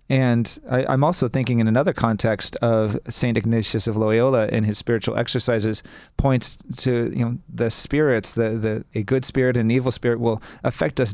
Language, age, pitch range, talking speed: English, 40-59, 110-125 Hz, 190 wpm